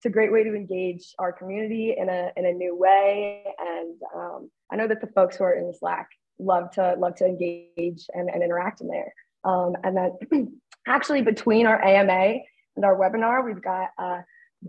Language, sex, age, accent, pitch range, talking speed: English, female, 20-39, American, 195-240 Hz, 200 wpm